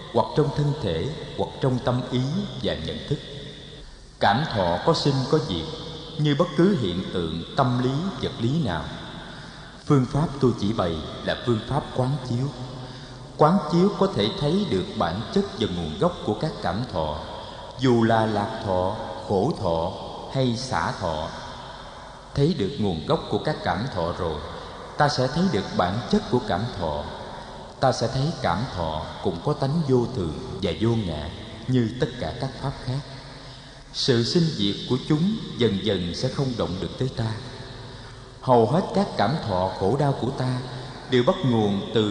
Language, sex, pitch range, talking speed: Vietnamese, male, 105-145 Hz, 175 wpm